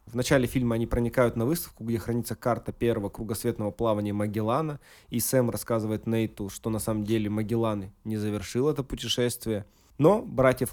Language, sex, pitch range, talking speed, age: Russian, male, 105-125 Hz, 160 wpm, 20-39